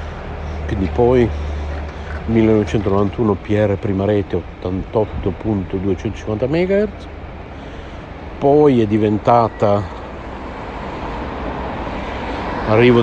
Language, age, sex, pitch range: Italian, 50-69, male, 80-105 Hz